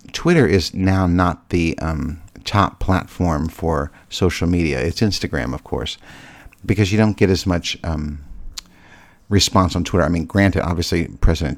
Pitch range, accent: 85-100 Hz, American